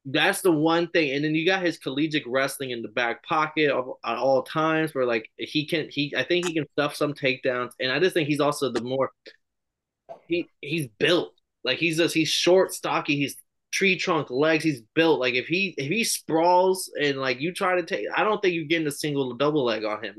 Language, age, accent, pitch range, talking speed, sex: English, 20-39, American, 125-165 Hz, 235 wpm, male